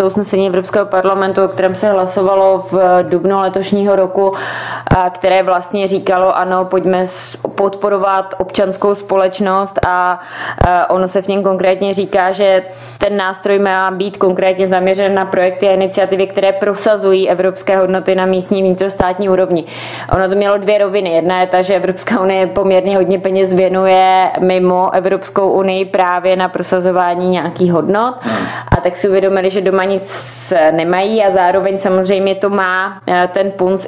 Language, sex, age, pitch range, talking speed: Czech, female, 20-39, 185-195 Hz, 145 wpm